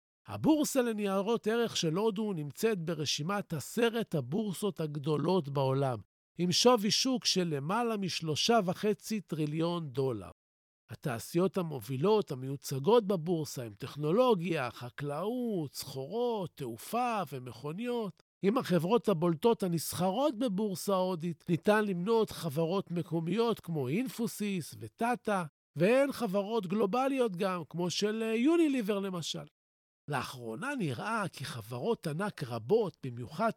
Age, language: 50-69, Hebrew